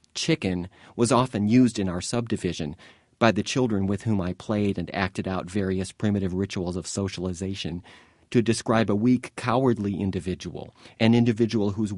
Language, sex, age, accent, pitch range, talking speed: English, male, 40-59, American, 95-115 Hz, 155 wpm